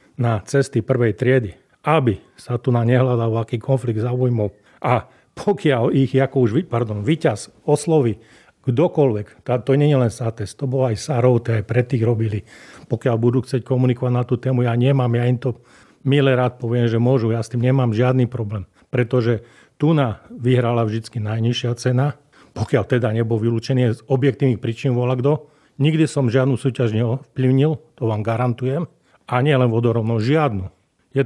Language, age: Slovak, 40-59